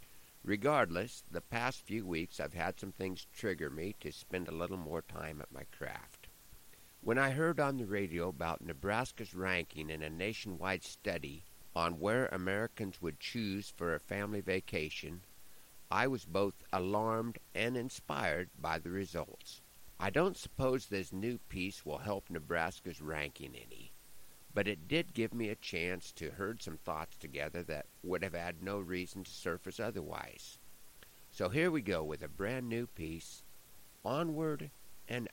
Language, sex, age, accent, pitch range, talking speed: English, male, 50-69, American, 85-115 Hz, 160 wpm